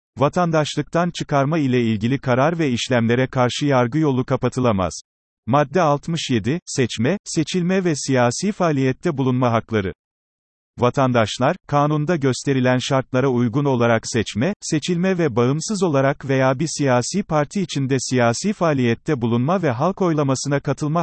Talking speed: 125 wpm